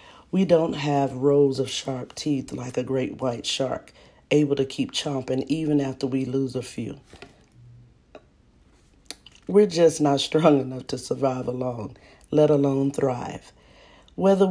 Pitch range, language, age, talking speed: 130-155 Hz, English, 40-59, 140 wpm